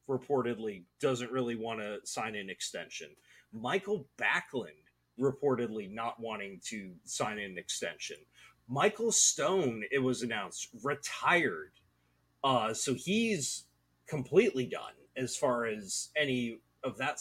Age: 30-49